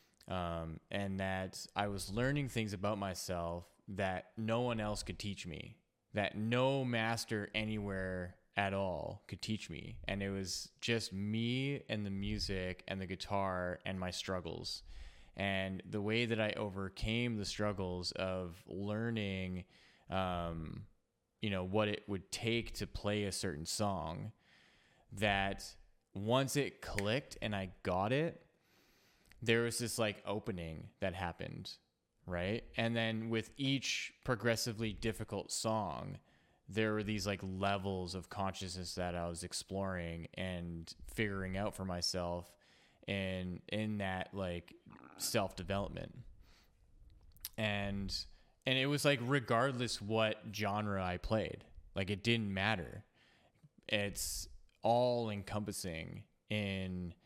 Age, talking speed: 20-39, 130 wpm